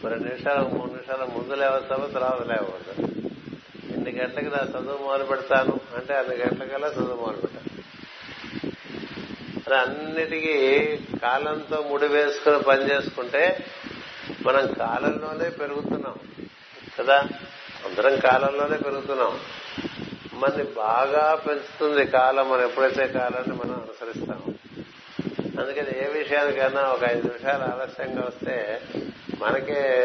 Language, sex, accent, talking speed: Telugu, male, native, 105 wpm